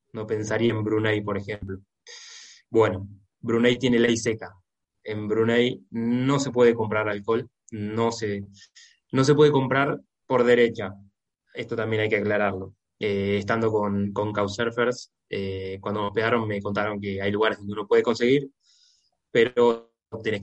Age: 20-39